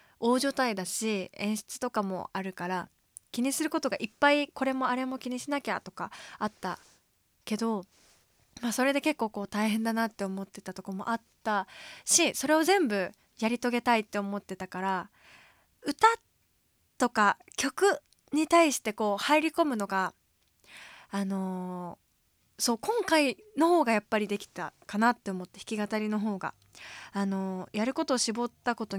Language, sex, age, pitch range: Japanese, female, 20-39, 200-255 Hz